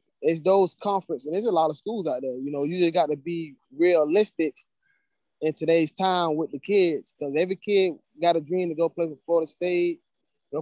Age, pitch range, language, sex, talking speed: 20-39, 150-175 Hz, English, male, 215 wpm